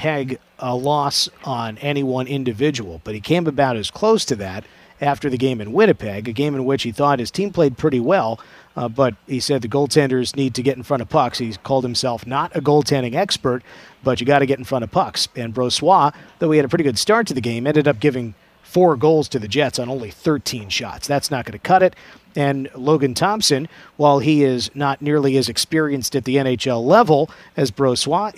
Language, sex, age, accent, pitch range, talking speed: English, male, 50-69, American, 125-155 Hz, 225 wpm